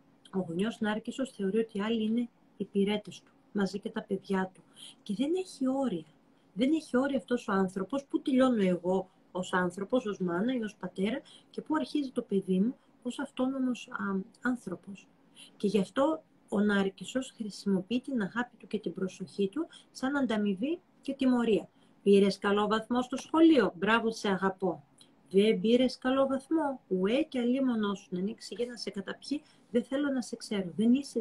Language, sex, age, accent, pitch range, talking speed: Greek, female, 40-59, native, 195-255 Hz, 170 wpm